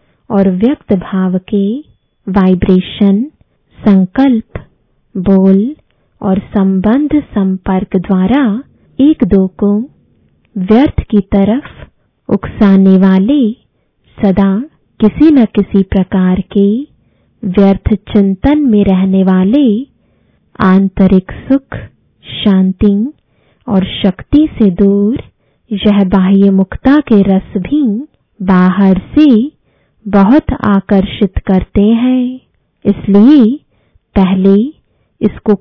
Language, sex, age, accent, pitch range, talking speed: English, female, 20-39, Indian, 195-235 Hz, 90 wpm